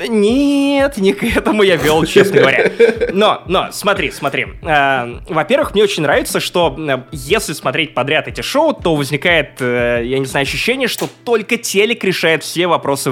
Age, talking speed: 20-39, 155 wpm